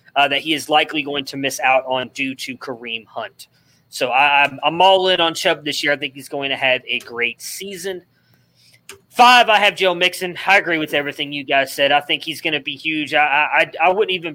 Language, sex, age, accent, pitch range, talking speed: English, male, 20-39, American, 135-170 Hz, 240 wpm